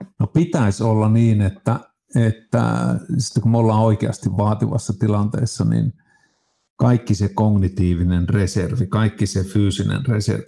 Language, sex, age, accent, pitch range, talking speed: Finnish, male, 50-69, native, 100-115 Hz, 120 wpm